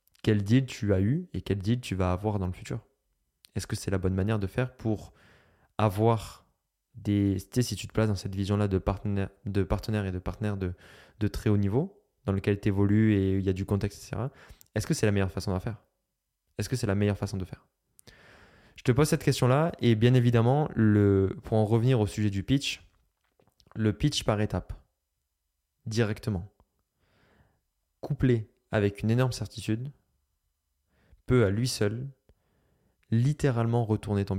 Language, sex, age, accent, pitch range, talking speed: French, male, 20-39, French, 100-120 Hz, 180 wpm